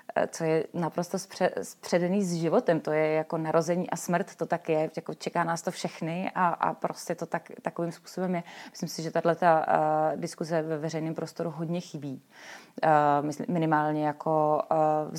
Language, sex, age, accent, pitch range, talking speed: Czech, female, 30-49, native, 155-180 Hz, 160 wpm